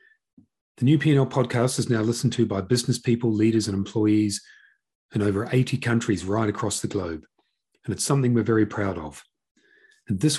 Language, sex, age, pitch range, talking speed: English, male, 40-59, 105-125 Hz, 180 wpm